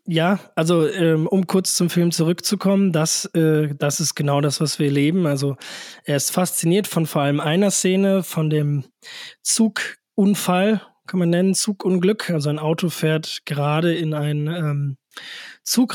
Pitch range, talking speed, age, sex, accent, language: 150-175 Hz, 160 wpm, 20-39, male, German, German